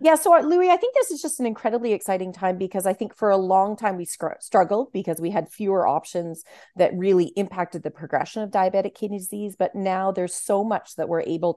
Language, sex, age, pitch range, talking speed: English, female, 30-49, 165-200 Hz, 225 wpm